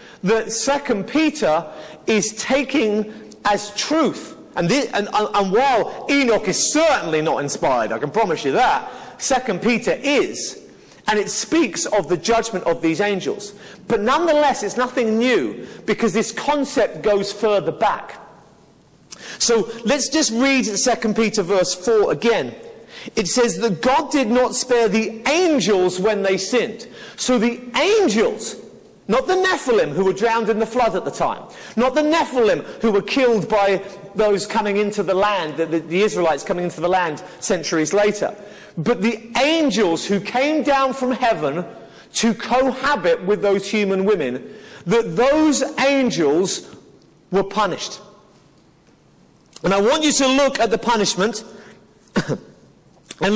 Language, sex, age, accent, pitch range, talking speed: English, male, 40-59, British, 205-255 Hz, 150 wpm